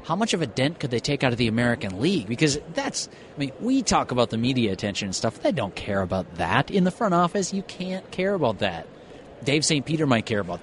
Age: 30-49